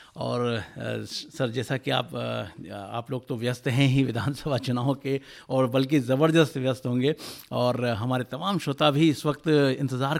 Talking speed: 160 wpm